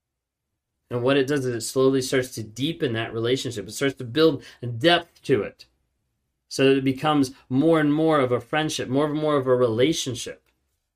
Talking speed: 195 wpm